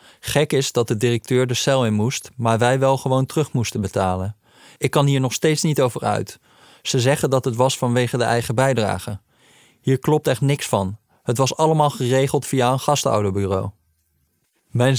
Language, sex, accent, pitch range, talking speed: Dutch, male, Dutch, 110-130 Hz, 185 wpm